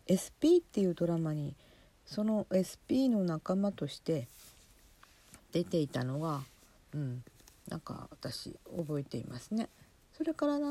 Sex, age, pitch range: female, 50-69, 150-210 Hz